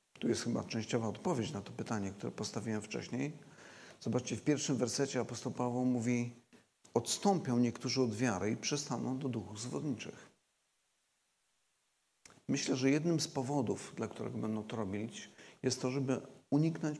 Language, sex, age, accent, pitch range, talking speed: Polish, male, 50-69, native, 125-170 Hz, 145 wpm